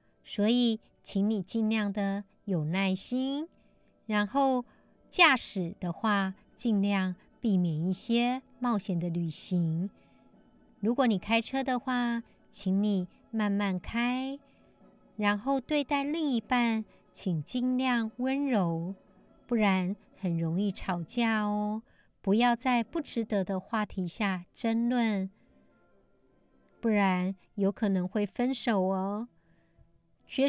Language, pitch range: Chinese, 195-255 Hz